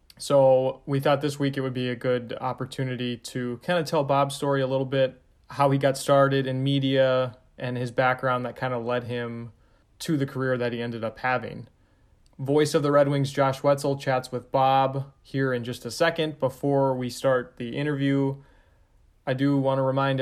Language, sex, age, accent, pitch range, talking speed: English, male, 20-39, American, 125-140 Hz, 200 wpm